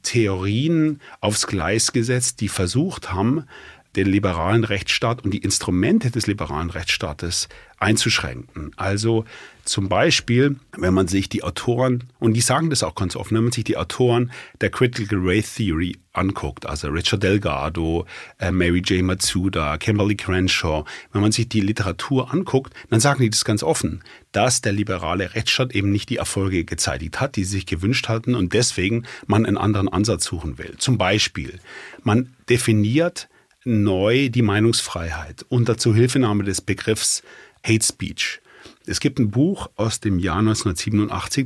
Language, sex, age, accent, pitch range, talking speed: German, male, 40-59, German, 95-120 Hz, 155 wpm